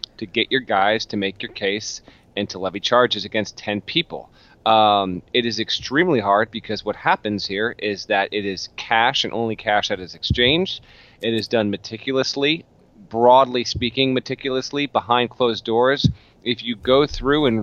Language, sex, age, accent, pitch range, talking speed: English, male, 30-49, American, 105-125 Hz, 170 wpm